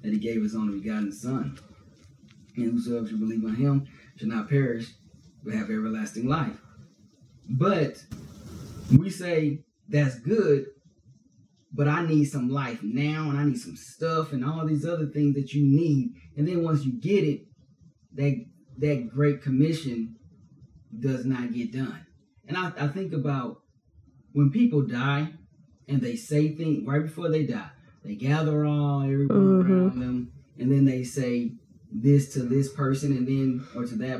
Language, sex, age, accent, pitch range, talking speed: English, male, 30-49, American, 130-155 Hz, 165 wpm